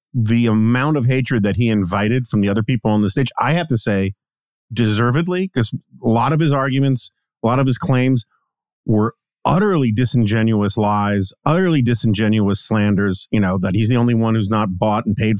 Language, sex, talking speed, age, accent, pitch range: English, male, 190 wpm, 40-59, American, 110-135 Hz